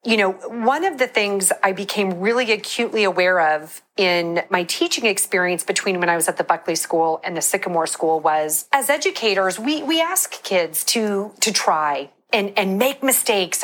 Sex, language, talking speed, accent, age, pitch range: female, English, 185 wpm, American, 40-59, 185-245 Hz